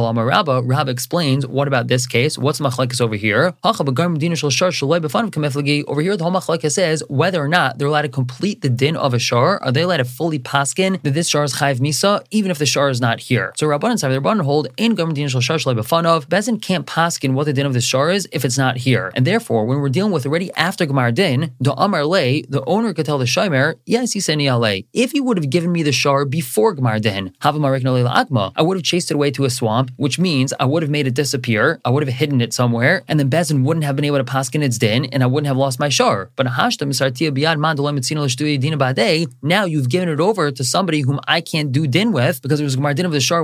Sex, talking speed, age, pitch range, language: male, 235 wpm, 20-39, 130-160 Hz, English